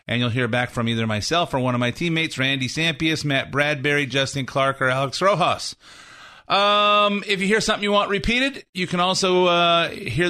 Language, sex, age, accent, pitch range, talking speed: English, male, 30-49, American, 125-165 Hz, 200 wpm